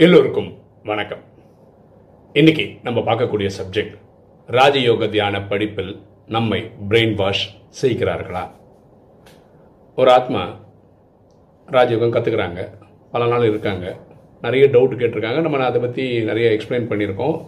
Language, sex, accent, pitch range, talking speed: Tamil, male, native, 105-150 Hz, 100 wpm